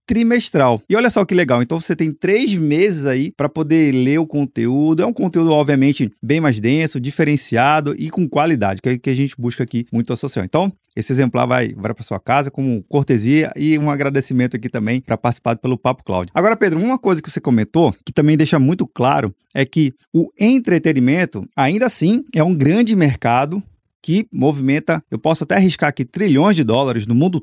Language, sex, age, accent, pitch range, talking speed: Portuguese, male, 20-39, Brazilian, 130-180 Hz, 200 wpm